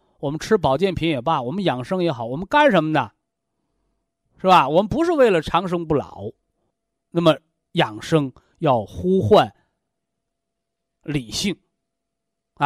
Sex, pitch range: male, 150-235 Hz